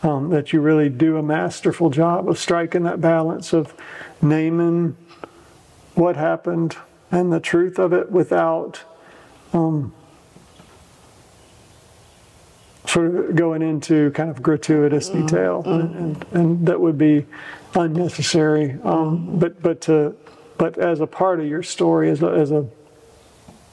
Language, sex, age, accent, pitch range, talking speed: English, male, 40-59, American, 155-175 Hz, 130 wpm